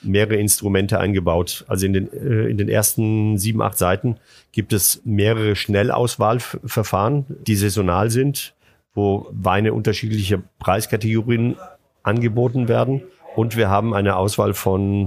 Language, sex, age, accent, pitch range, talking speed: German, male, 40-59, German, 95-115 Hz, 125 wpm